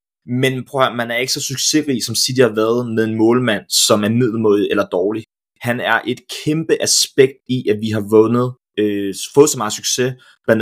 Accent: native